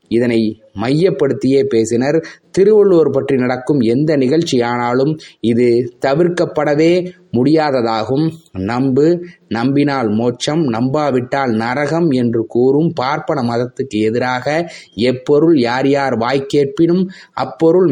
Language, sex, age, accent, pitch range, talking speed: Tamil, male, 30-49, native, 125-165 Hz, 85 wpm